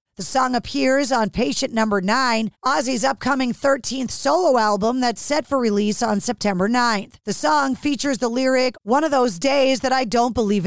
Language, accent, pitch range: English, American, 225-275 Hz